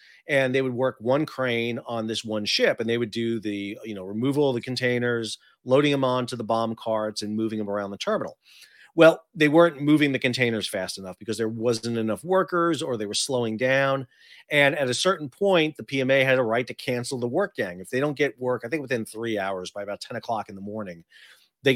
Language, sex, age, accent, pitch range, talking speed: English, male, 40-59, American, 105-135 Hz, 230 wpm